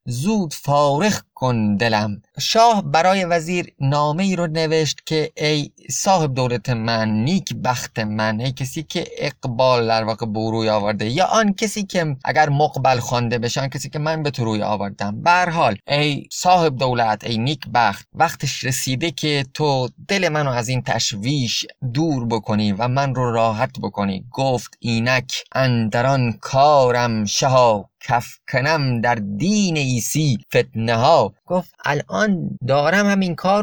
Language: Persian